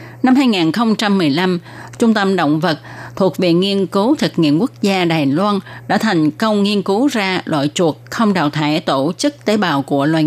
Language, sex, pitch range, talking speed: Vietnamese, female, 155-215 Hz, 195 wpm